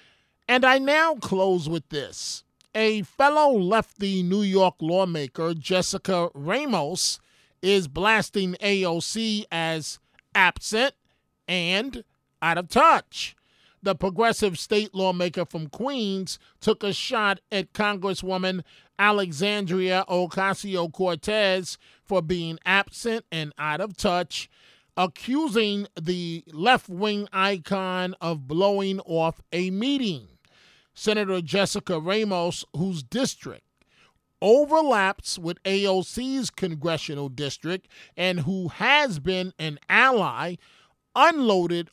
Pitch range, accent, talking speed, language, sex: 170-210 Hz, American, 100 wpm, English, male